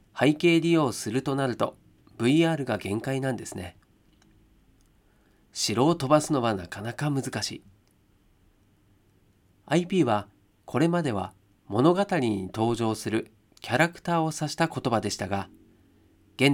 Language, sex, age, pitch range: Japanese, male, 40-59, 100-155 Hz